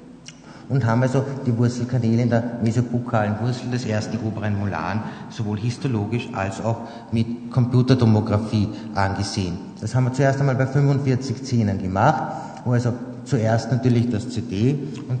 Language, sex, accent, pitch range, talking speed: German, male, Austrian, 110-130 Hz, 140 wpm